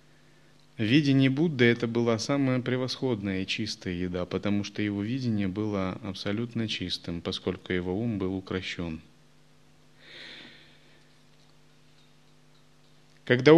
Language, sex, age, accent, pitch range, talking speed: Russian, male, 30-49, native, 95-125 Hz, 95 wpm